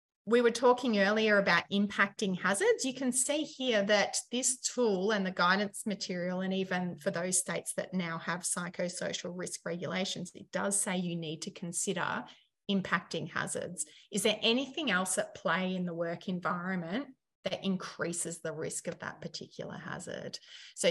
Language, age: English, 30-49